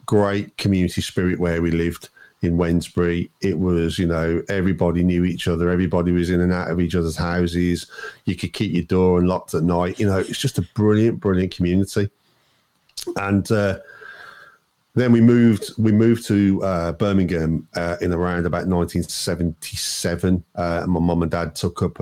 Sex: male